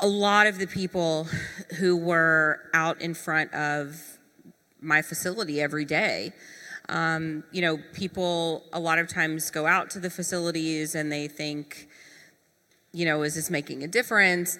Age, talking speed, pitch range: 30-49, 155 wpm, 155-185 Hz